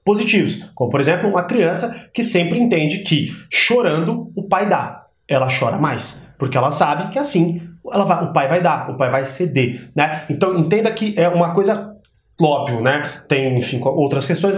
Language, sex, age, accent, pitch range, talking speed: Portuguese, male, 30-49, Brazilian, 135-180 Hz, 185 wpm